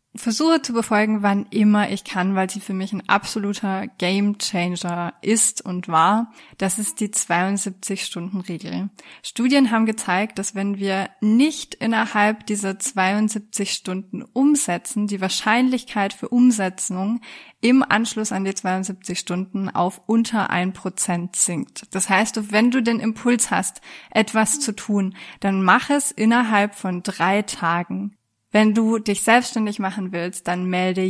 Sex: female